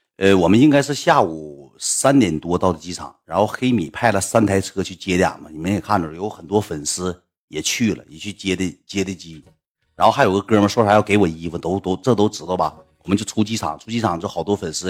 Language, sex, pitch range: Chinese, male, 85-115 Hz